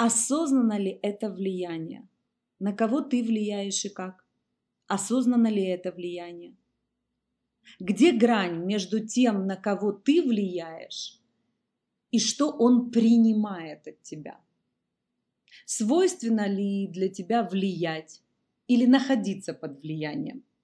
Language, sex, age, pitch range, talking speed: Russian, female, 30-49, 180-230 Hz, 110 wpm